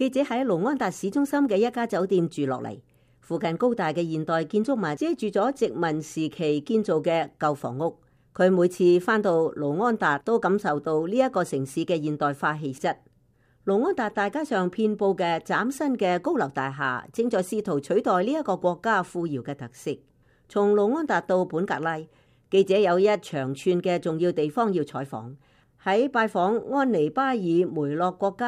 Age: 50-69